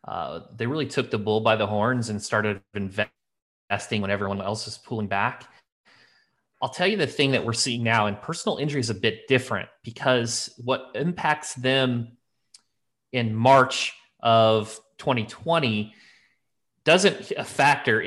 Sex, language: male, English